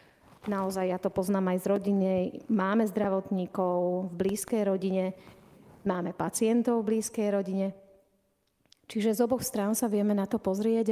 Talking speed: 145 wpm